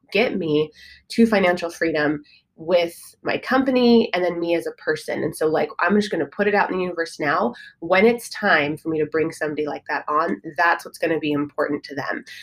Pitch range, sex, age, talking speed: 160-200 Hz, female, 20-39, 215 wpm